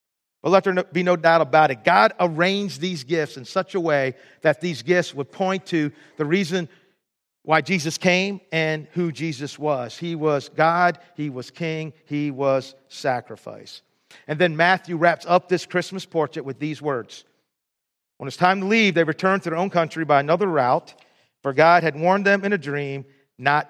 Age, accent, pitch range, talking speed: 50-69, American, 150-195 Hz, 185 wpm